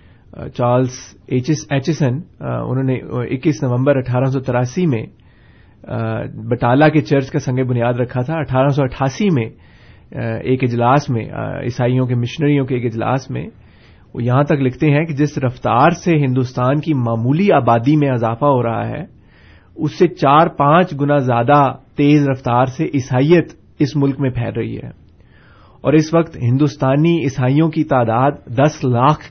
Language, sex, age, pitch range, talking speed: Urdu, male, 30-49, 120-145 Hz, 150 wpm